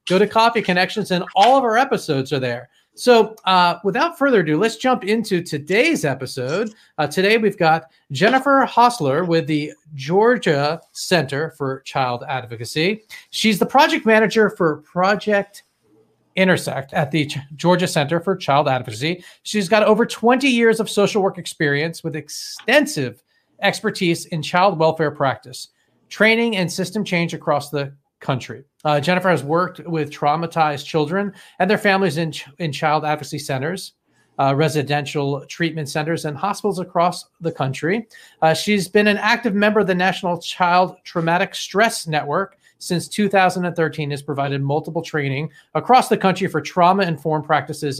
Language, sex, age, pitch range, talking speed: English, male, 40-59, 145-195 Hz, 150 wpm